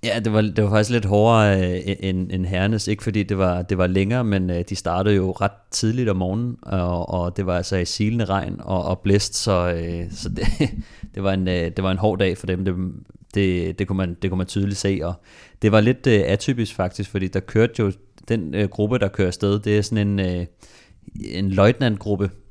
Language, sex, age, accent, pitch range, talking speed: Danish, male, 30-49, native, 95-105 Hz, 235 wpm